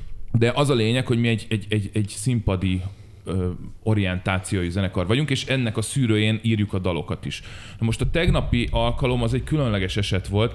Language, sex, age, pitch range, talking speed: Hungarian, male, 30-49, 100-115 Hz, 180 wpm